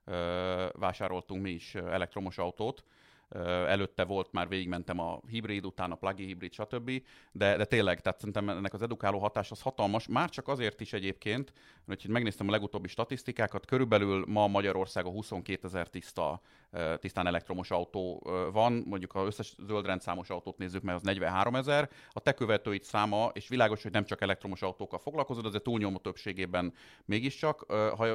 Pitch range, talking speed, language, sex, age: 90-110 Hz, 160 wpm, Hungarian, male, 30-49